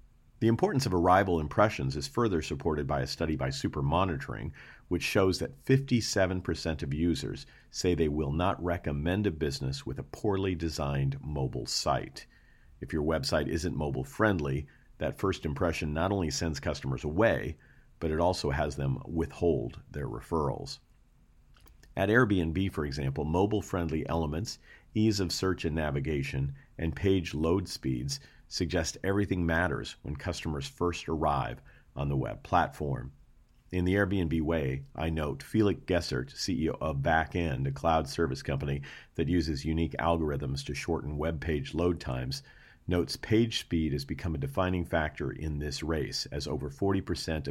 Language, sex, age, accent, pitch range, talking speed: English, male, 40-59, American, 70-90 Hz, 150 wpm